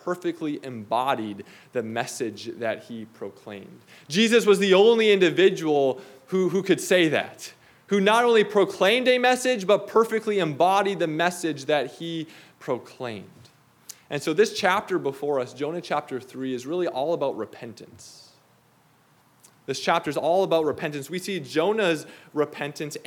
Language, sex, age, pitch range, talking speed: English, male, 20-39, 150-205 Hz, 145 wpm